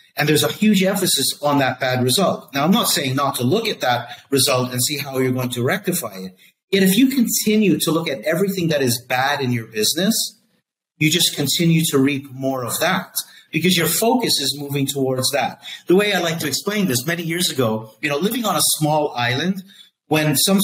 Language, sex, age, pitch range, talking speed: English, male, 50-69, 125-165 Hz, 220 wpm